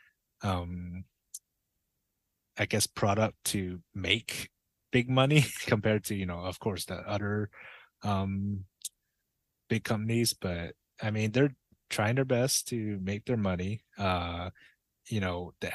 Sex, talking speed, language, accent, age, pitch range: male, 130 wpm, English, American, 20-39, 95-110 Hz